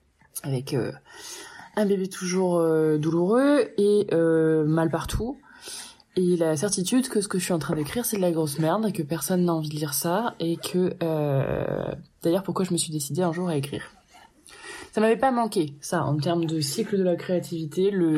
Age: 20-39